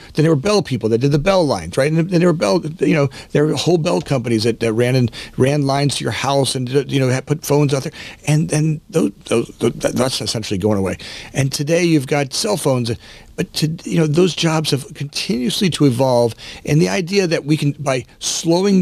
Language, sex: English, male